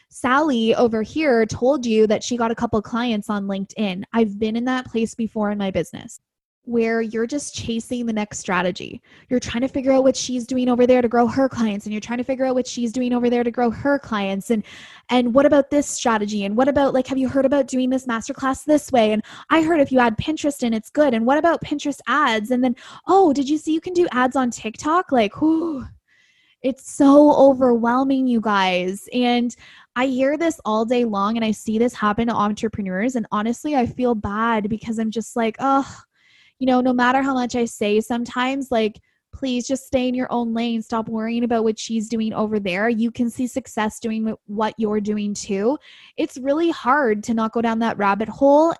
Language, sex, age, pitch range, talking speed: English, female, 10-29, 220-260 Hz, 220 wpm